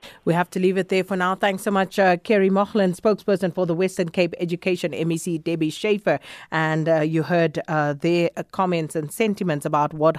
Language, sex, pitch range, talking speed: English, female, 170-210 Hz, 200 wpm